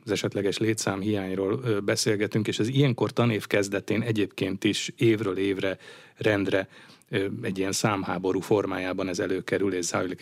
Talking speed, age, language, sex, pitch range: 130 wpm, 30-49, Hungarian, male, 95-110 Hz